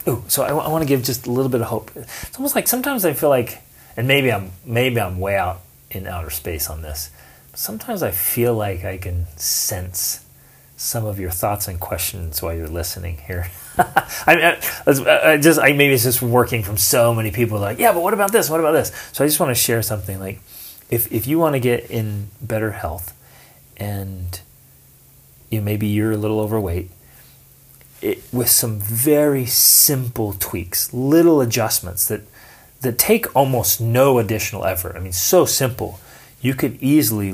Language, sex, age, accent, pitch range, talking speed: English, male, 30-49, American, 100-145 Hz, 190 wpm